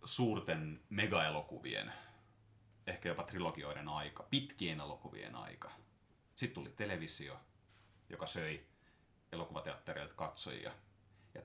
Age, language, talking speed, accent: 30-49, Finnish, 90 wpm, native